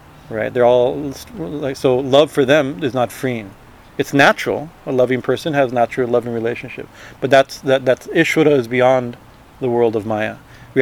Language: English